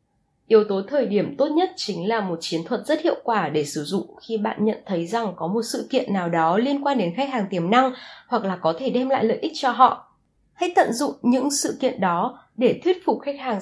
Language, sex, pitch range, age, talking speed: Vietnamese, female, 180-265 Hz, 20-39, 250 wpm